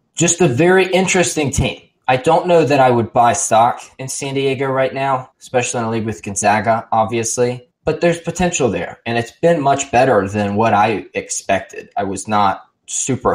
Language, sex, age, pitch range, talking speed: English, male, 20-39, 100-135 Hz, 190 wpm